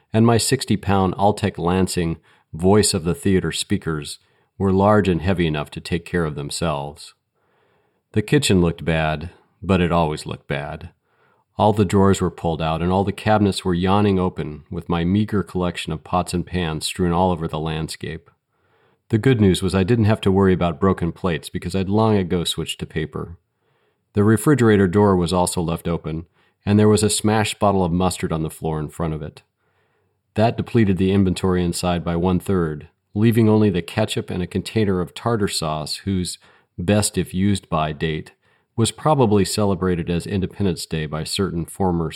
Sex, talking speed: male, 175 wpm